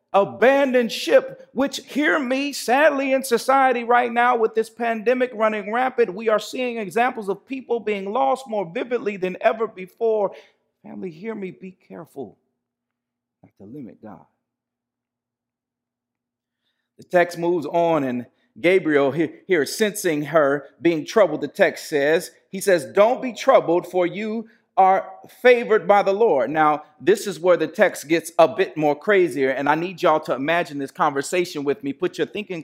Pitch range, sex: 165-230 Hz, male